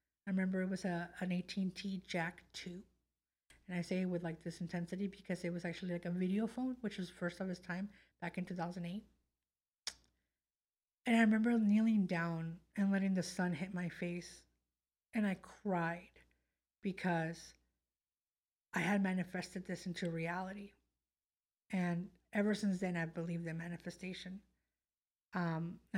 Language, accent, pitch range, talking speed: English, American, 170-190 Hz, 150 wpm